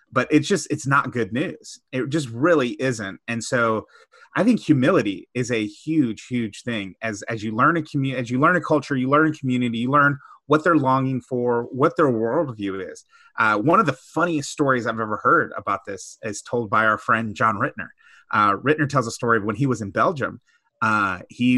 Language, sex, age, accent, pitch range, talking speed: English, male, 30-49, American, 120-150 Hz, 215 wpm